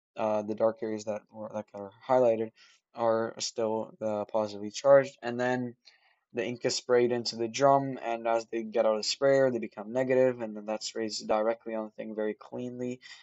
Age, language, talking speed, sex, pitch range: 20-39, English, 195 wpm, male, 110-130 Hz